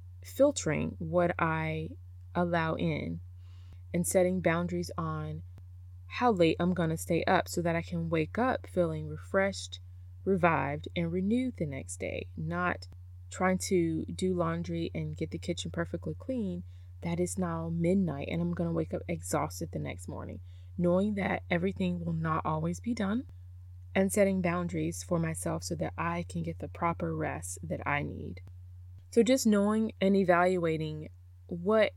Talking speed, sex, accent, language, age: 160 wpm, female, American, English, 20-39